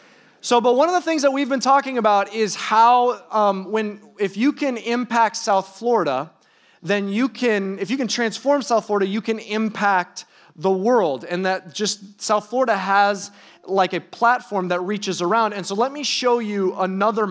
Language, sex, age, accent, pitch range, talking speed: English, male, 30-49, American, 175-220 Hz, 185 wpm